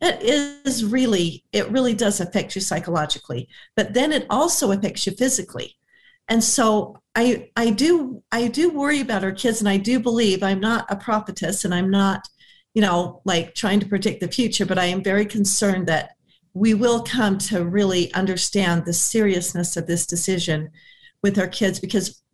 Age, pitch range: 50-69, 175-220 Hz